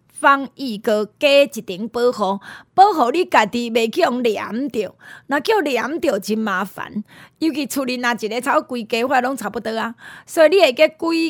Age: 30-49